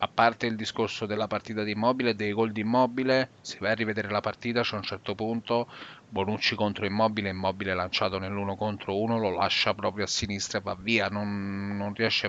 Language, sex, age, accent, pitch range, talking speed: Italian, male, 30-49, native, 105-120 Hz, 200 wpm